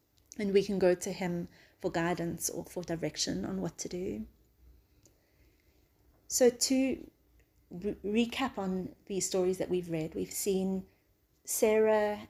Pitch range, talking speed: 175-195 Hz, 130 wpm